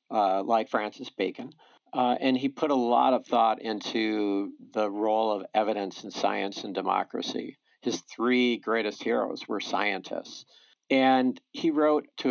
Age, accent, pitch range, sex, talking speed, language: 50-69, American, 100-125 Hz, male, 150 wpm, English